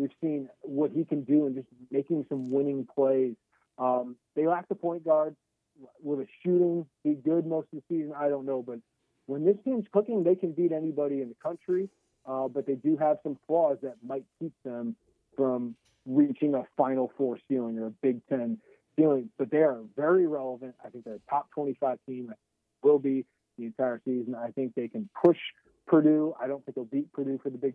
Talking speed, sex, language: 210 wpm, male, English